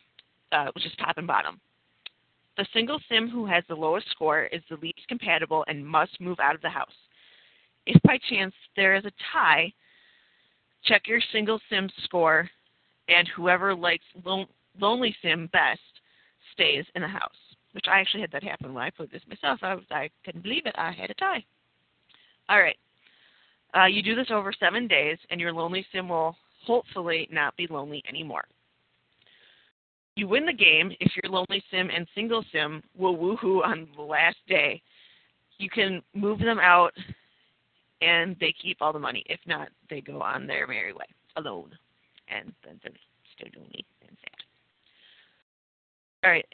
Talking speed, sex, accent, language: 170 wpm, female, American, English